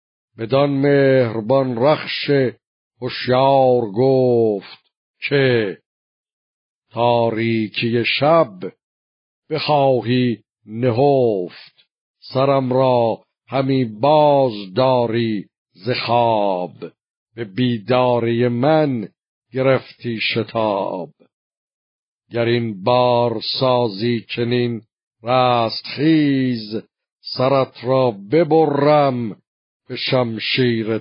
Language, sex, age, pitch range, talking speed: Persian, male, 50-69, 115-135 Hz, 65 wpm